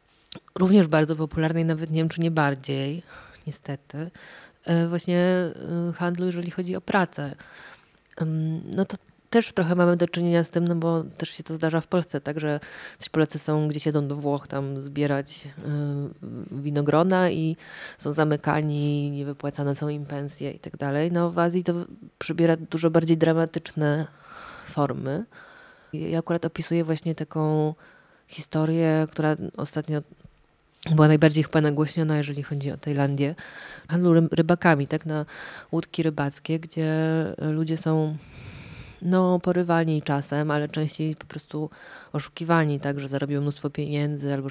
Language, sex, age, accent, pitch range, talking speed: Polish, female, 20-39, native, 145-170 Hz, 140 wpm